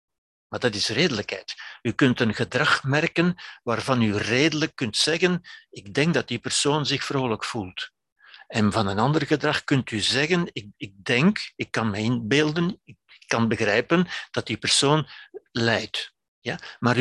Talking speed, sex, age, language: 160 wpm, male, 60-79, Dutch